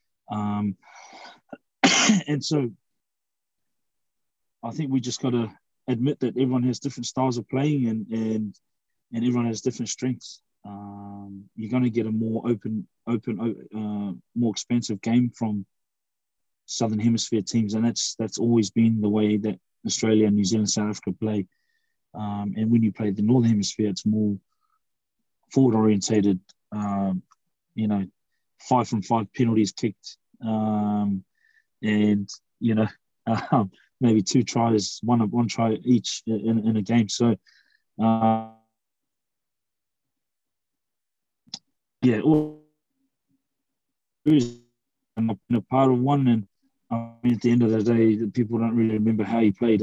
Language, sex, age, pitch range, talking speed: English, male, 20-39, 105-120 Hz, 140 wpm